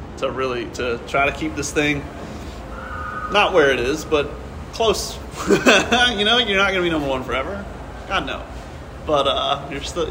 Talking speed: 170 wpm